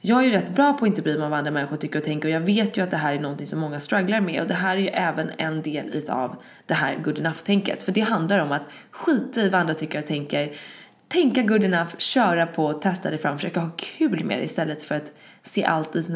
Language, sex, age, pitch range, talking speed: English, female, 20-39, 160-215 Hz, 265 wpm